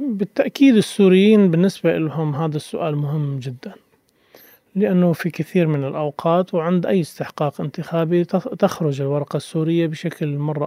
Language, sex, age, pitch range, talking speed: Arabic, male, 30-49, 145-185 Hz, 125 wpm